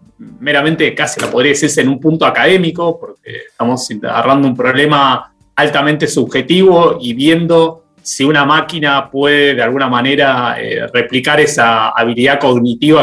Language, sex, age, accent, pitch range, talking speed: Spanish, male, 20-39, Argentinian, 130-165 Hz, 140 wpm